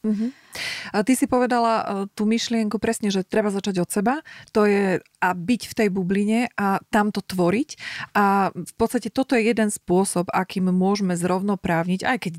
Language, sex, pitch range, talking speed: Slovak, female, 170-205 Hz, 170 wpm